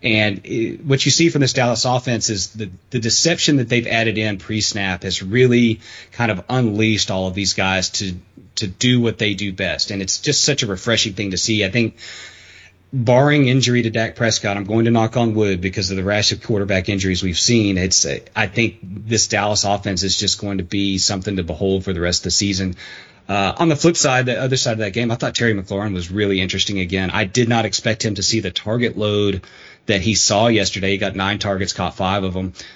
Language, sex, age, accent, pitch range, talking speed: English, male, 30-49, American, 95-120 Hz, 230 wpm